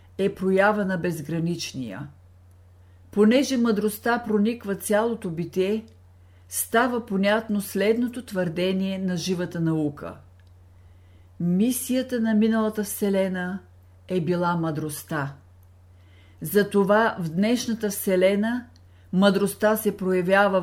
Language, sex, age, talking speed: Bulgarian, female, 50-69, 85 wpm